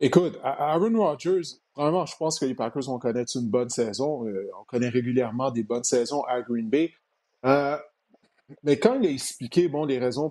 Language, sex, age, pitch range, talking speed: French, male, 30-49, 125-155 Hz, 185 wpm